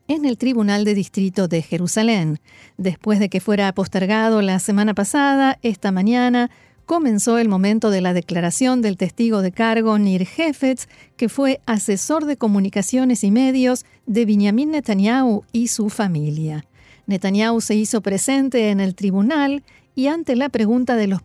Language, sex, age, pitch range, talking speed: Spanish, female, 50-69, 195-250 Hz, 155 wpm